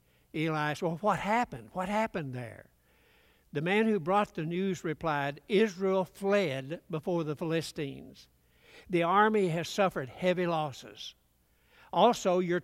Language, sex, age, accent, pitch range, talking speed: English, male, 60-79, American, 145-190 Hz, 135 wpm